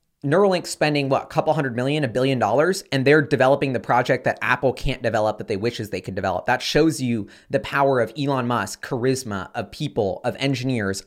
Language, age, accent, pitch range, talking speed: English, 20-39, American, 120-165 Hz, 205 wpm